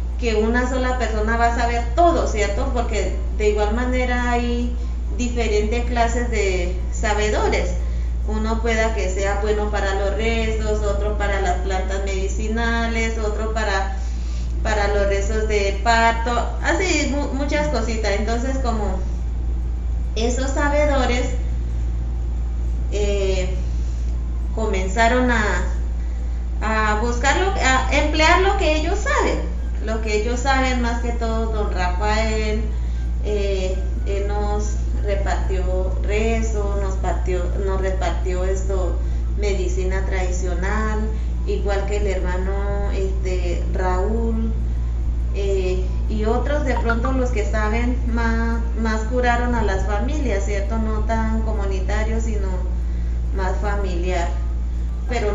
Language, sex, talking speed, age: Spanish, female, 115 wpm, 30-49